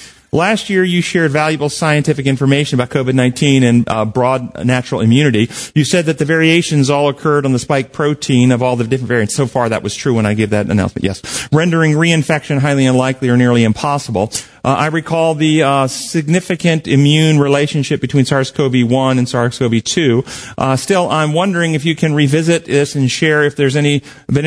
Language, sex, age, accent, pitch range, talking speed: English, male, 40-59, American, 125-155 Hz, 185 wpm